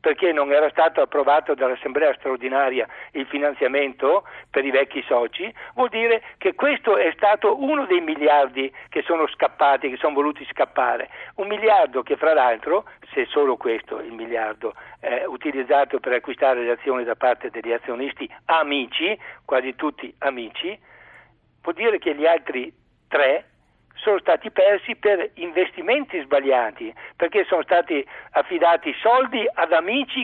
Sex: male